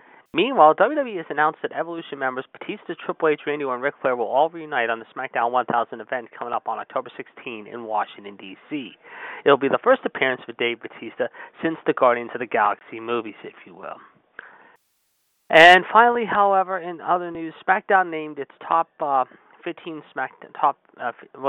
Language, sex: English, male